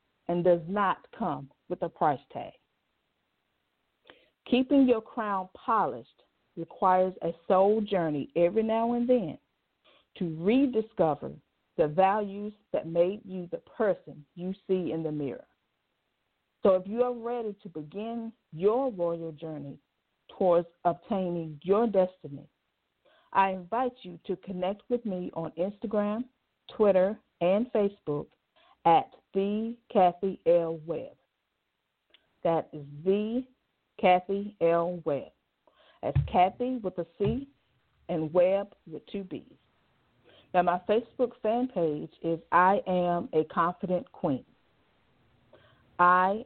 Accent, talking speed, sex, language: American, 120 wpm, female, English